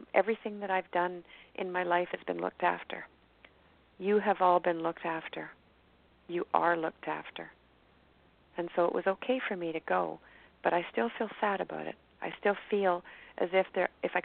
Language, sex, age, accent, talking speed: English, female, 40-59, American, 185 wpm